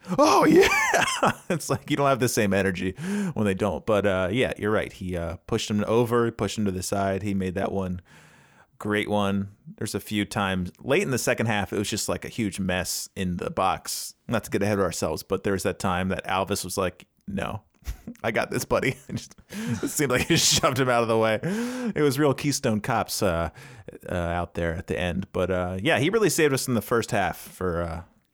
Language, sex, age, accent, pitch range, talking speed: English, male, 30-49, American, 95-125 Hz, 230 wpm